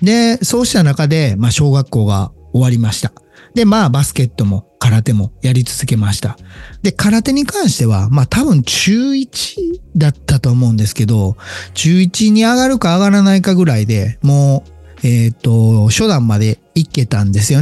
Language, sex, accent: Japanese, male, native